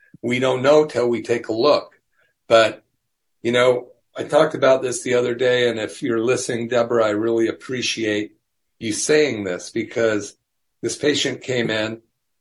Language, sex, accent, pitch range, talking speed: English, male, American, 105-125 Hz, 165 wpm